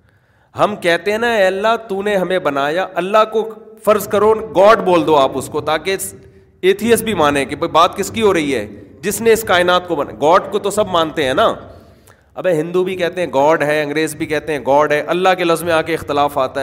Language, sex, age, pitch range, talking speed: Urdu, male, 30-49, 135-180 Hz, 230 wpm